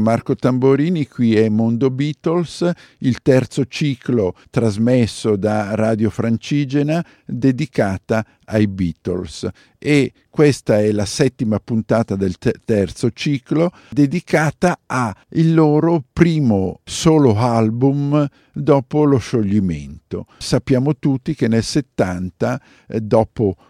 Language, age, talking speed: Italian, 50-69, 100 wpm